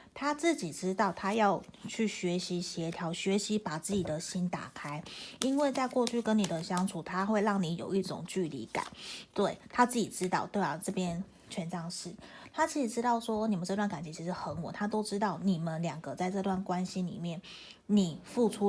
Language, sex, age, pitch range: Chinese, female, 30-49, 180-225 Hz